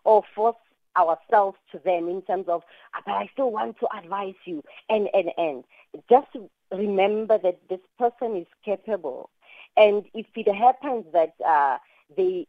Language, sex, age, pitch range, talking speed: English, female, 40-59, 175-235 Hz, 155 wpm